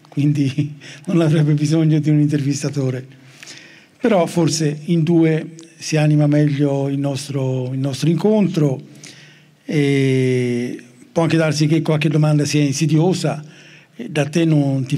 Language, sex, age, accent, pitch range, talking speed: Italian, male, 60-79, native, 145-165 Hz, 130 wpm